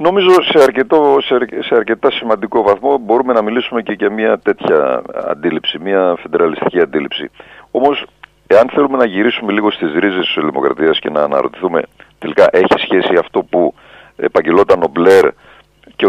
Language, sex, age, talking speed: Greek, male, 40-59, 155 wpm